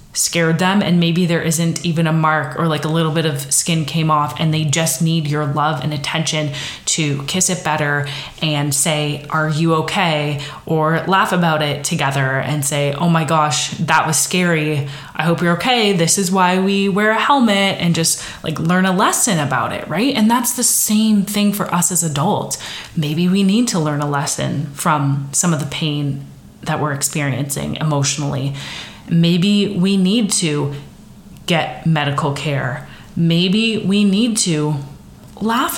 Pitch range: 150-185 Hz